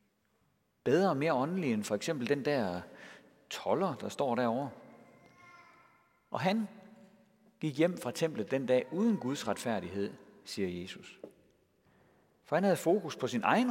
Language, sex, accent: Danish, male, native